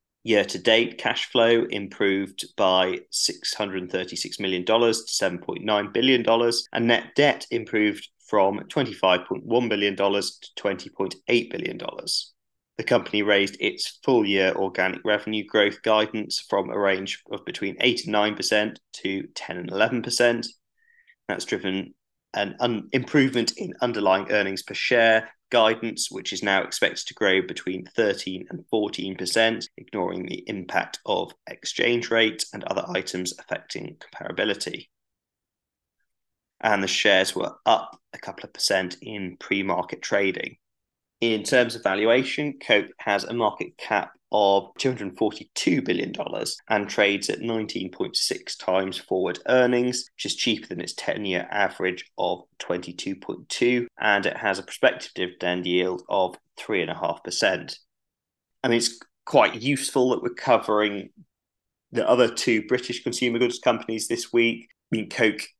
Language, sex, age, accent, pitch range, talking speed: English, male, 20-39, British, 95-120 Hz, 145 wpm